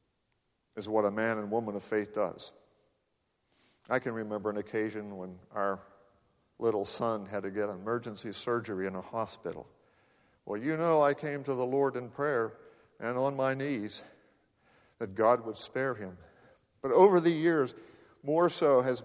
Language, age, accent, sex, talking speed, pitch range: English, 50-69, American, male, 165 wpm, 105-135 Hz